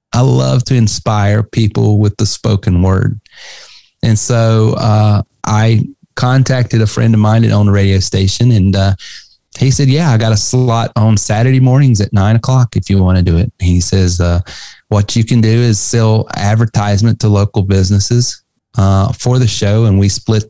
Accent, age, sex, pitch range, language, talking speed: American, 30-49, male, 95-115 Hz, English, 185 wpm